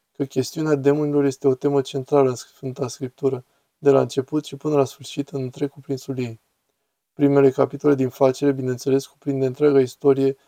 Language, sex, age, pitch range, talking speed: Romanian, male, 20-39, 135-145 Hz, 160 wpm